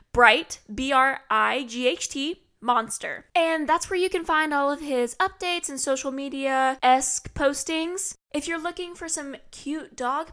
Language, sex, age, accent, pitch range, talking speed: English, female, 10-29, American, 240-310 Hz, 140 wpm